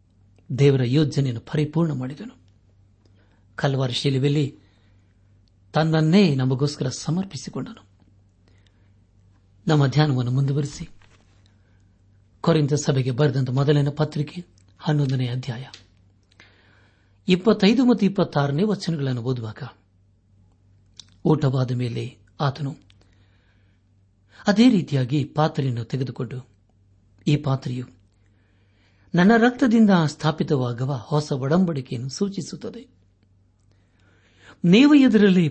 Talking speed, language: 65 wpm, Kannada